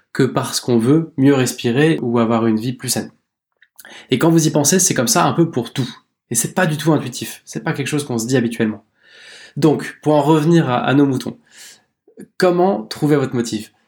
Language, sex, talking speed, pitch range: French, male, 215 wpm, 120-145 Hz